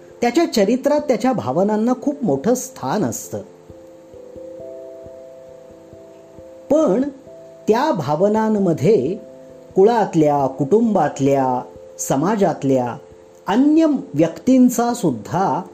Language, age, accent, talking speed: Marathi, 40-59, native, 65 wpm